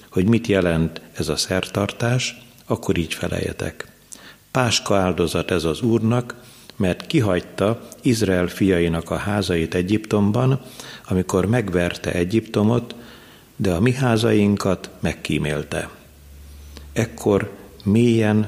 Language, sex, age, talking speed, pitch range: Hungarian, male, 50-69, 100 wpm, 85-115 Hz